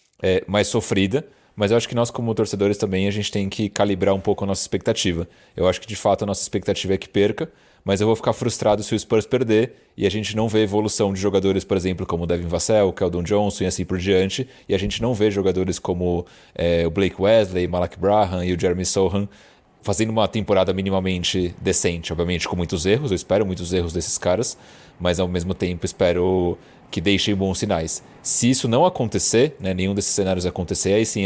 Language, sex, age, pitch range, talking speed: Portuguese, male, 30-49, 90-105 Hz, 215 wpm